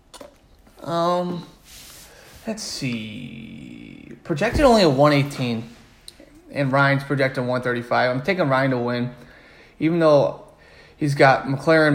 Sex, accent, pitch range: male, American, 130-160 Hz